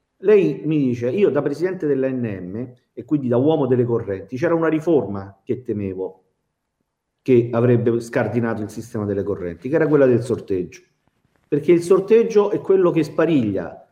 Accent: native